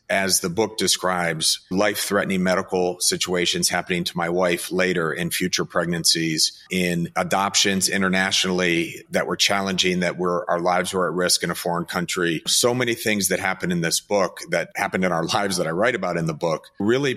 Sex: male